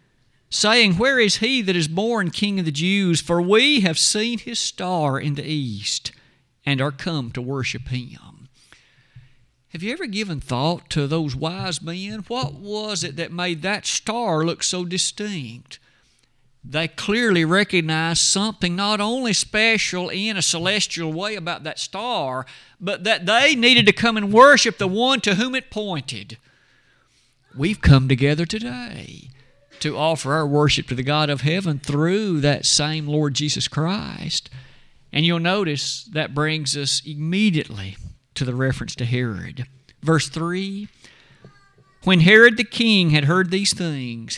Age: 50-69